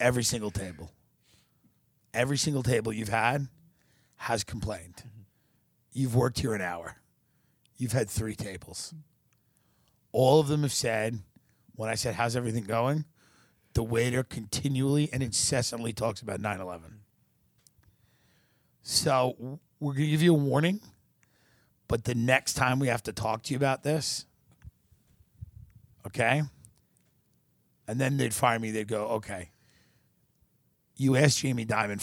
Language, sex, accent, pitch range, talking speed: English, male, American, 110-135 Hz, 135 wpm